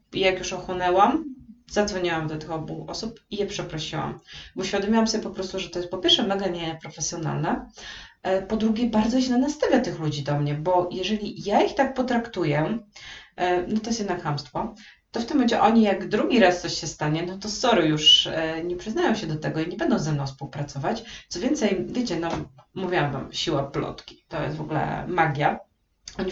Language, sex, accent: Polish, female, native